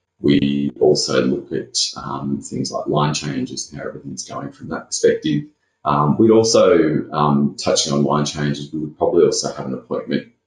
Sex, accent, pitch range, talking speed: male, Australian, 70-75 Hz, 180 wpm